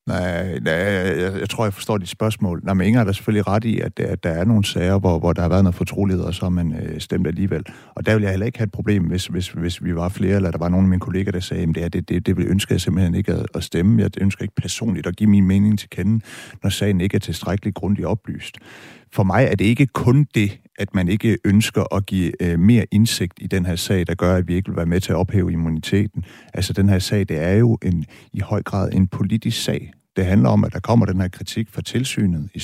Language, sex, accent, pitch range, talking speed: Danish, male, native, 90-110 Hz, 270 wpm